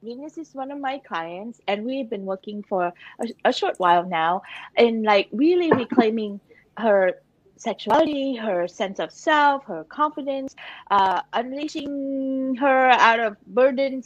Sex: female